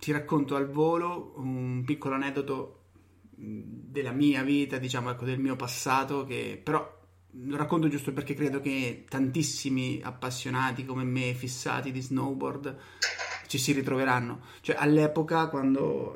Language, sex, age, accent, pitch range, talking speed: Italian, male, 30-49, native, 125-145 Hz, 135 wpm